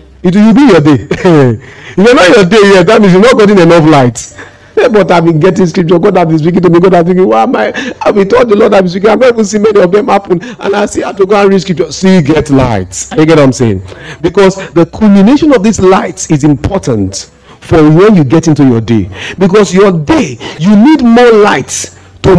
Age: 50-69